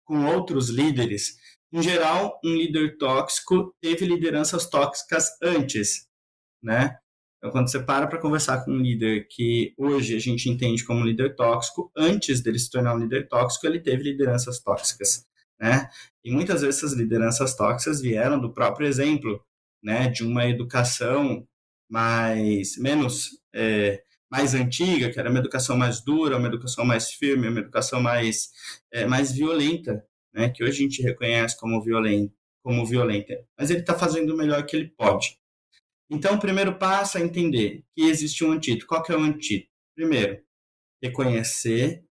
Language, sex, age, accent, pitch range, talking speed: Portuguese, male, 20-39, Brazilian, 120-155 Hz, 165 wpm